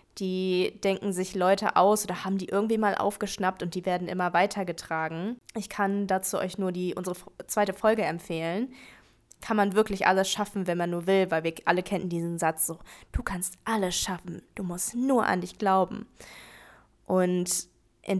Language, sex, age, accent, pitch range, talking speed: German, female, 20-39, German, 175-205 Hz, 175 wpm